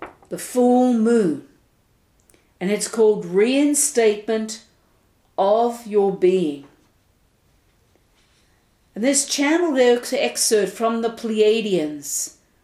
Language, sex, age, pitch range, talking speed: English, female, 50-69, 185-240 Hz, 85 wpm